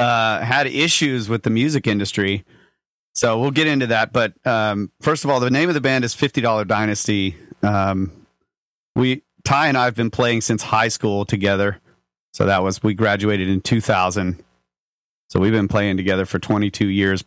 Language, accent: English, American